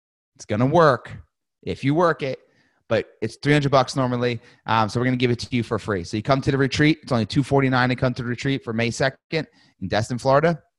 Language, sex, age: English, male, 30-49